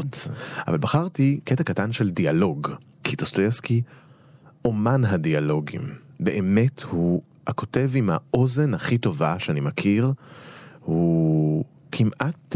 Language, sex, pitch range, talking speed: Hebrew, male, 120-165 Hz, 100 wpm